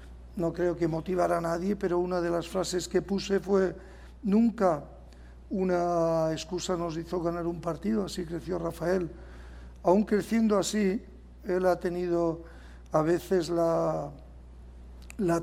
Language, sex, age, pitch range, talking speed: Spanish, male, 60-79, 160-185 Hz, 135 wpm